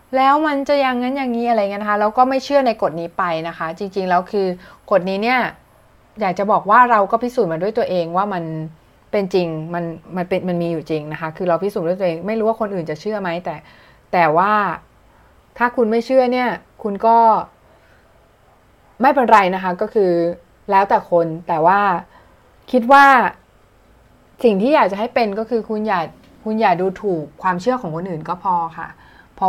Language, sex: Thai, female